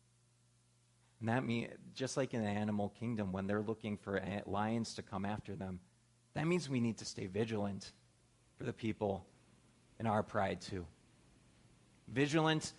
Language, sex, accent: English, male, American